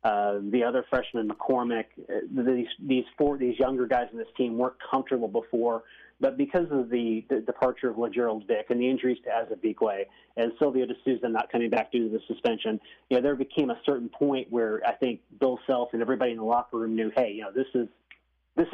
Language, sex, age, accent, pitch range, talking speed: English, male, 30-49, American, 115-135 Hz, 215 wpm